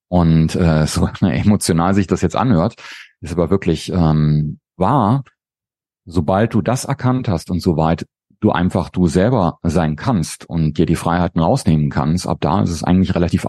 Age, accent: 40-59, German